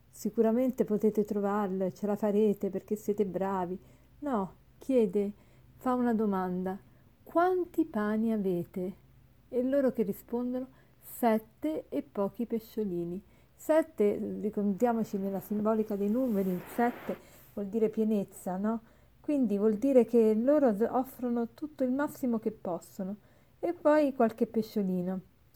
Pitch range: 205-250 Hz